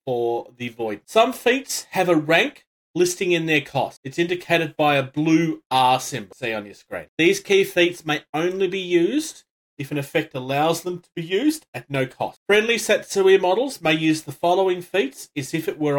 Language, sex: English, male